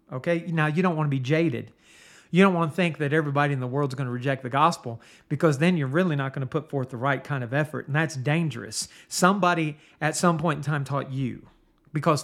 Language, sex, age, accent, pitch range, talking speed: English, male, 40-59, American, 135-170 Hz, 245 wpm